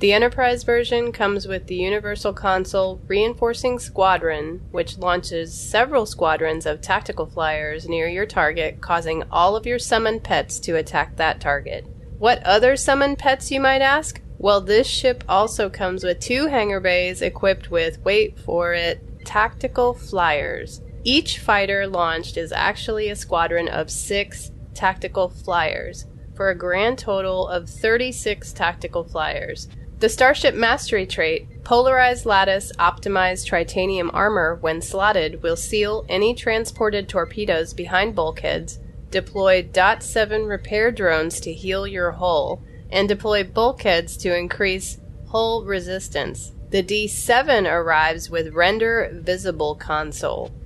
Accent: American